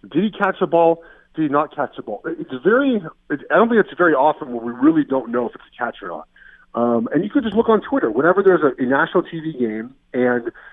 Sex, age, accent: male, 30-49, American